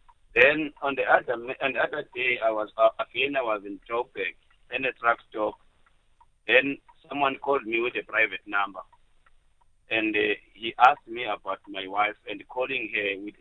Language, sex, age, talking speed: English, male, 50-69, 185 wpm